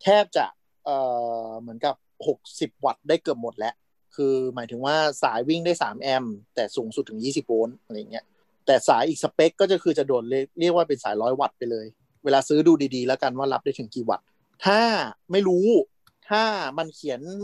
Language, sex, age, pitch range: Thai, male, 30-49, 125-160 Hz